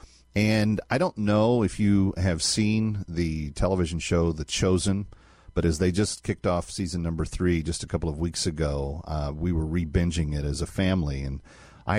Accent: American